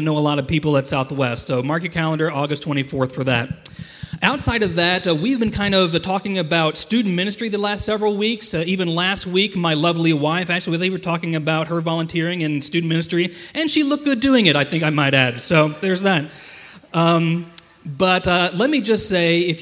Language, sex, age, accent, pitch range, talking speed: English, male, 30-49, American, 150-180 Hz, 220 wpm